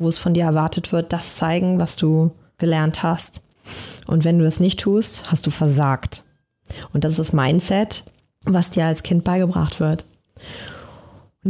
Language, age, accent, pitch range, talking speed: German, 30-49, German, 160-180 Hz, 170 wpm